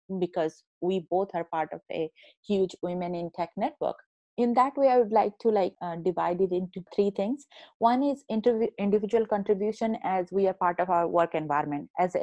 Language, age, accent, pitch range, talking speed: English, 20-39, Indian, 175-210 Hz, 200 wpm